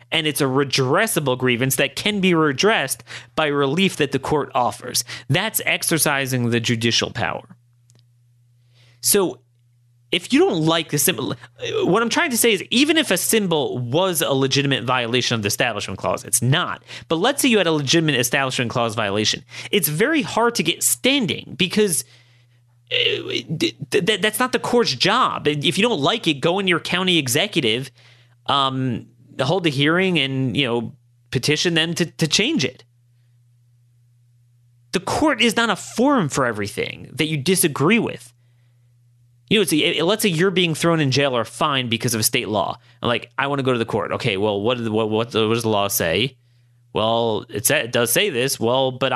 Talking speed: 185 wpm